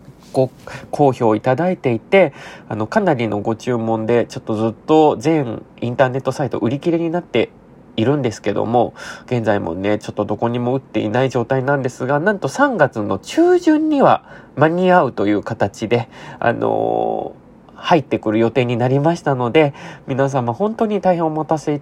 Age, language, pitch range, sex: 20-39, Japanese, 115-155 Hz, male